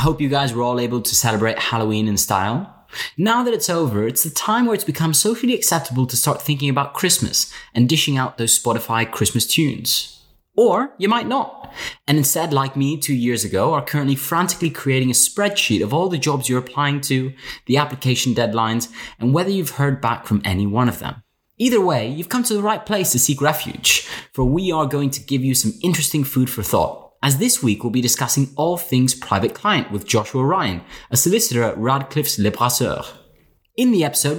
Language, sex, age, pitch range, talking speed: English, male, 20-39, 120-160 Hz, 205 wpm